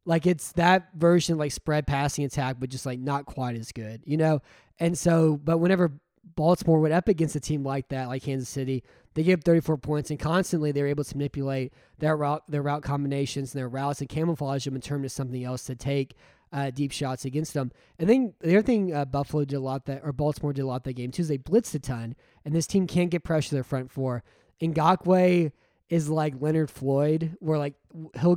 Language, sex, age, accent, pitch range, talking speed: English, male, 20-39, American, 135-165 Hz, 235 wpm